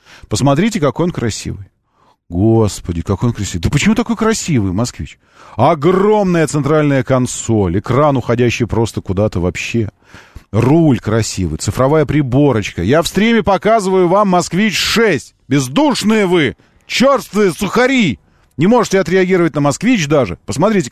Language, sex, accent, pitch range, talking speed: Russian, male, native, 110-170 Hz, 125 wpm